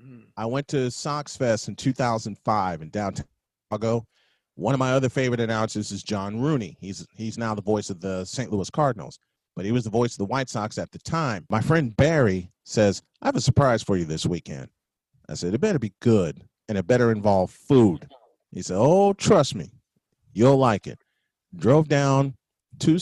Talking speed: 195 wpm